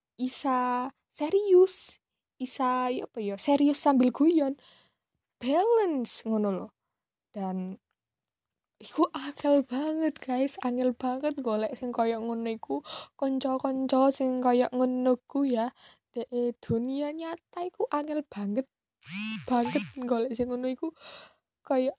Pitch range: 225-275 Hz